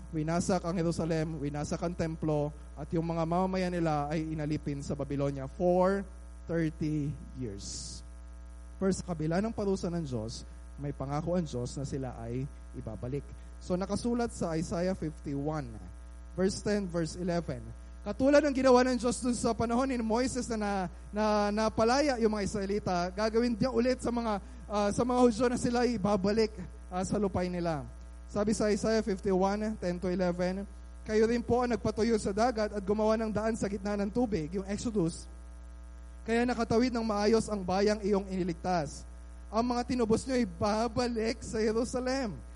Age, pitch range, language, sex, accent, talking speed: 20-39, 160-230 Hz, Filipino, male, native, 160 wpm